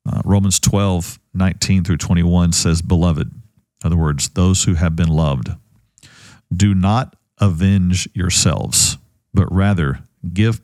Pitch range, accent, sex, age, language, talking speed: 90-110 Hz, American, male, 50-69, English, 130 wpm